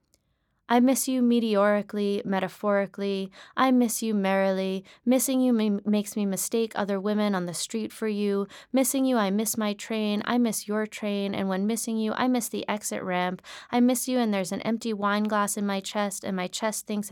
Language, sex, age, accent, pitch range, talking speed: English, female, 20-39, American, 190-225 Hz, 195 wpm